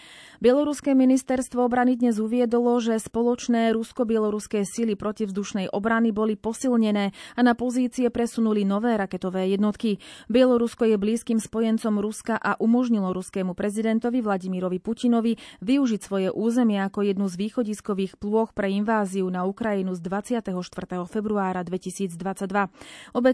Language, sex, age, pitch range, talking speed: Slovak, female, 30-49, 195-240 Hz, 125 wpm